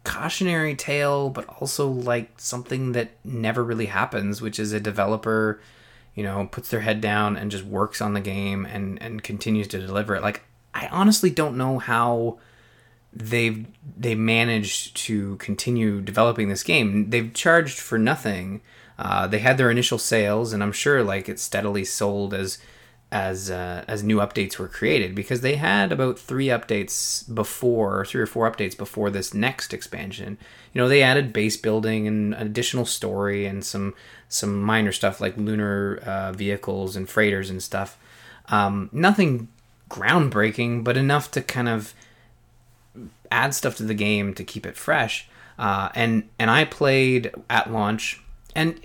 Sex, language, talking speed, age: male, English, 165 wpm, 20-39